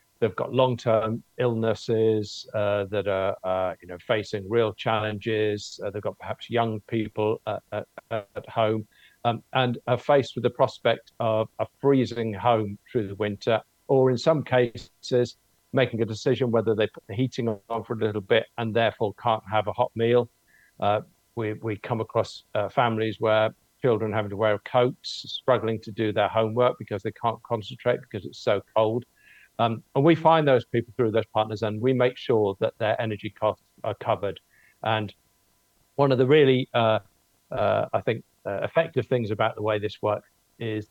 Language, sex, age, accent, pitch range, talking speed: English, male, 50-69, British, 105-120 Hz, 180 wpm